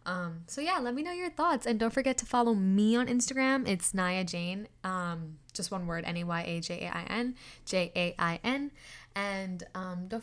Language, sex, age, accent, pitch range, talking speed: English, female, 10-29, American, 185-230 Hz, 225 wpm